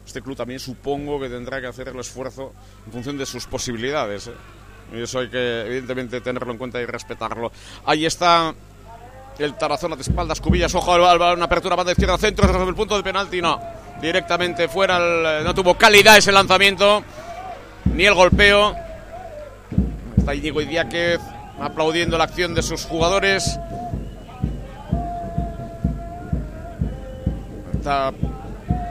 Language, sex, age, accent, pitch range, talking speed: Spanish, male, 60-79, Spanish, 135-185 Hz, 135 wpm